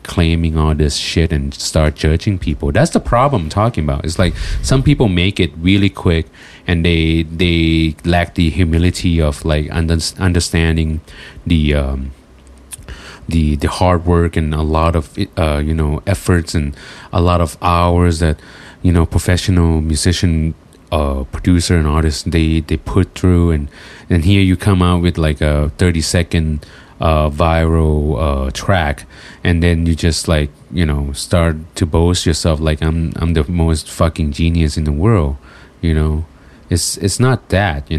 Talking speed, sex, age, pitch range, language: 165 wpm, male, 30-49, 75-90 Hz, English